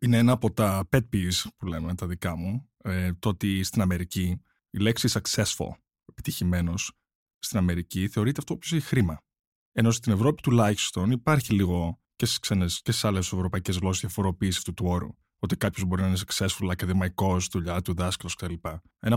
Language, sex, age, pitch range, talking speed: Greek, male, 20-39, 90-120 Hz, 175 wpm